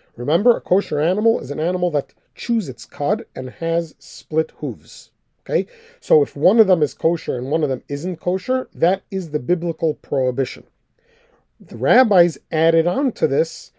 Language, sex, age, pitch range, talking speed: English, male, 40-59, 150-195 Hz, 175 wpm